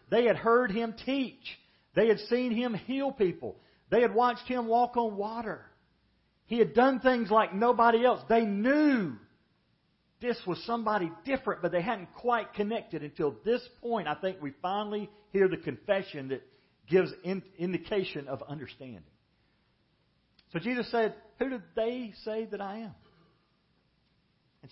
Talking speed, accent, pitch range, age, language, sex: 150 wpm, American, 150-225 Hz, 50-69, English, male